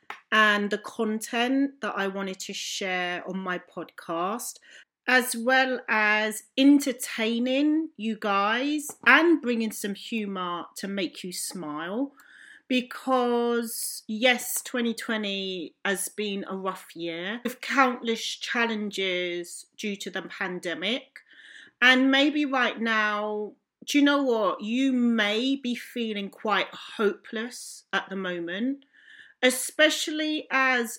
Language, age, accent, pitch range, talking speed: English, 40-59, British, 195-260 Hz, 115 wpm